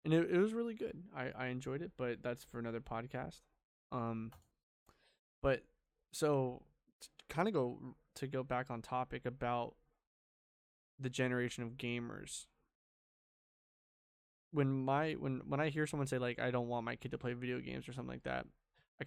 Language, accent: English, American